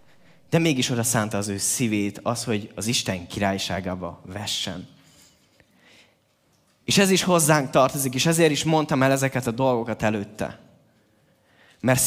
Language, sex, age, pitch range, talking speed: Hungarian, male, 20-39, 115-165 Hz, 140 wpm